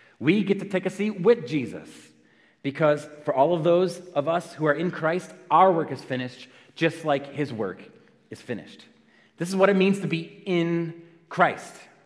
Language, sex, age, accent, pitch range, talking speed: English, male, 30-49, American, 120-175 Hz, 190 wpm